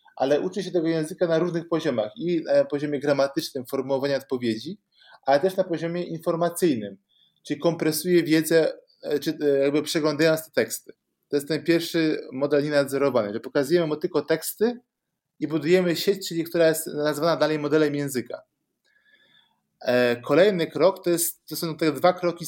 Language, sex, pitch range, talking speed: Polish, male, 145-175 Hz, 150 wpm